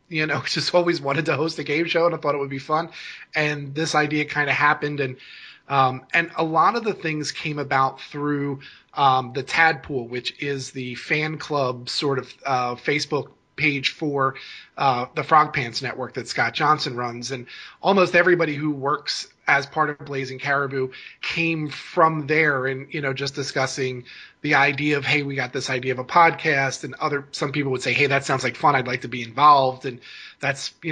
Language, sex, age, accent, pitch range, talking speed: English, male, 30-49, American, 135-155 Hz, 205 wpm